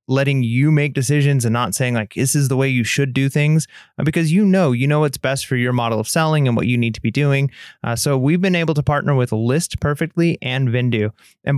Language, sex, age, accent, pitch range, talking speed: English, male, 30-49, American, 120-145 Hz, 250 wpm